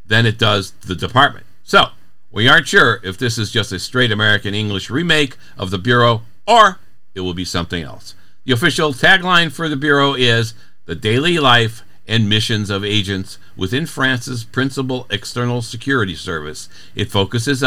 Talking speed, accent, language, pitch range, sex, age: 165 wpm, American, English, 95-135 Hz, male, 60-79